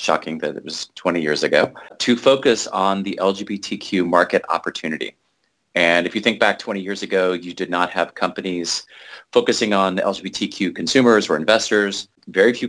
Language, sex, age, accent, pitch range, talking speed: English, male, 30-49, American, 85-105 Hz, 165 wpm